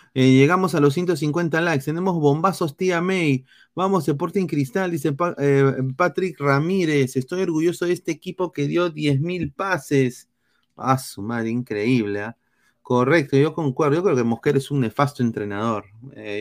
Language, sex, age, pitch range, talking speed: Spanish, male, 30-49, 125-165 Hz, 165 wpm